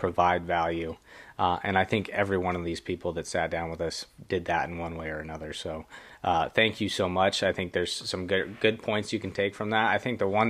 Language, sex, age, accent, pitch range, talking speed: English, male, 20-39, American, 90-105 Hz, 255 wpm